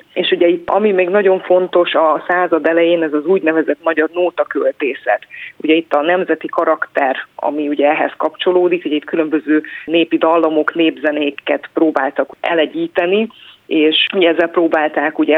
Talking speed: 140 wpm